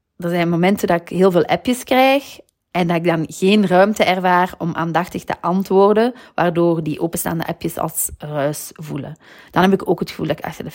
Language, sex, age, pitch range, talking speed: Dutch, female, 30-49, 160-225 Hz, 205 wpm